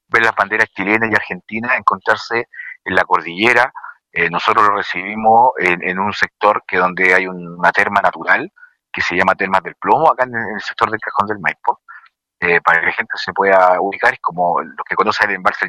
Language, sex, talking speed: Spanish, male, 205 wpm